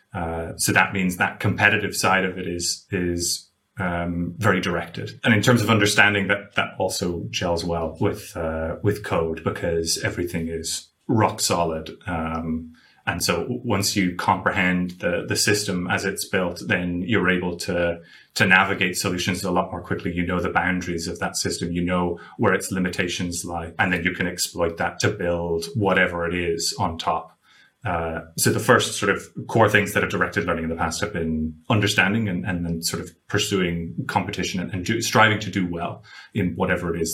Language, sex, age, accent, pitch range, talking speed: English, male, 30-49, British, 85-105 Hz, 190 wpm